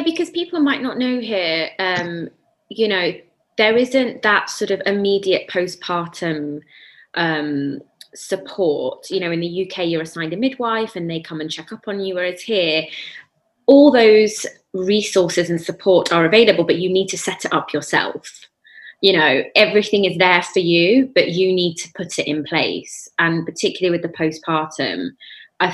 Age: 20-39